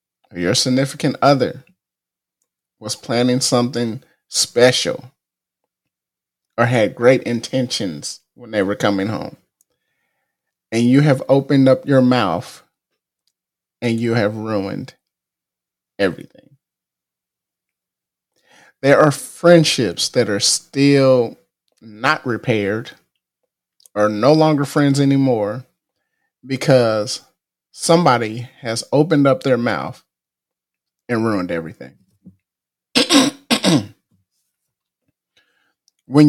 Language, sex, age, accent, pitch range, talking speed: English, male, 30-49, American, 110-145 Hz, 85 wpm